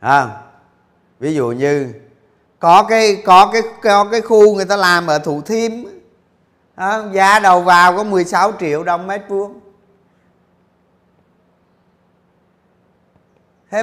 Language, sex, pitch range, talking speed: Vietnamese, male, 135-210 Hz, 120 wpm